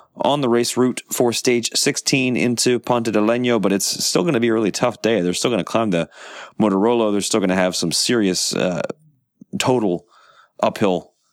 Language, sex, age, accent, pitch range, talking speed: English, male, 30-49, American, 95-125 Hz, 200 wpm